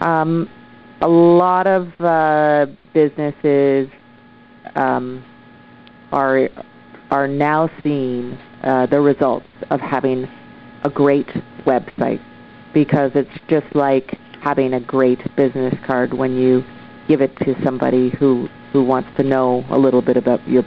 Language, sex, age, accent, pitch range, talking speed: English, female, 40-59, American, 125-155 Hz, 130 wpm